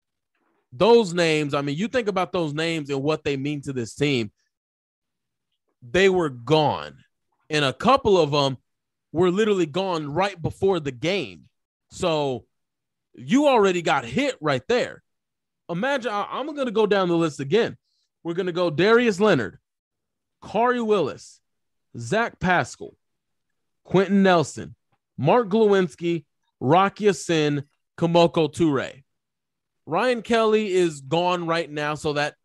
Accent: American